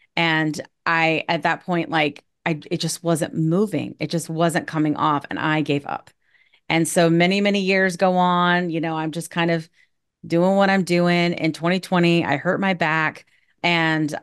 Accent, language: American, English